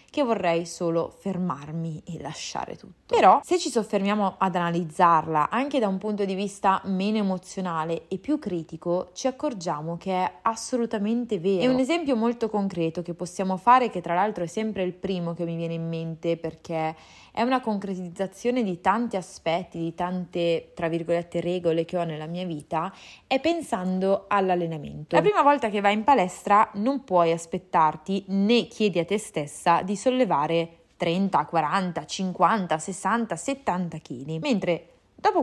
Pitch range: 170-215 Hz